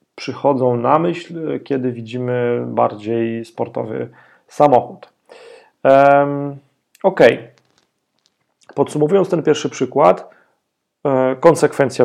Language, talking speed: Polish, 70 wpm